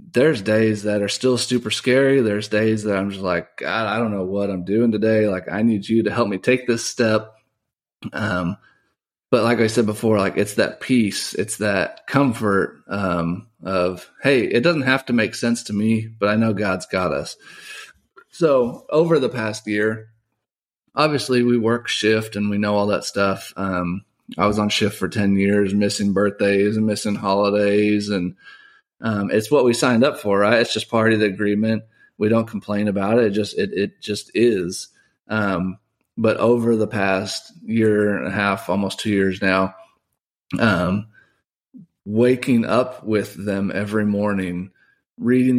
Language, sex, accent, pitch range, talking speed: English, male, American, 100-115 Hz, 180 wpm